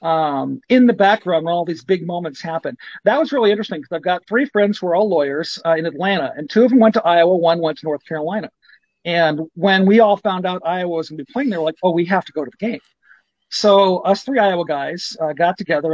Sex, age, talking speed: male, 50-69, 260 wpm